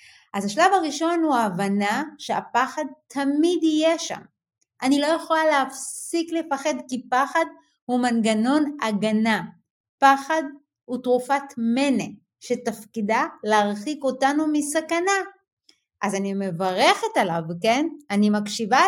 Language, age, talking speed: Hebrew, 30-49, 110 wpm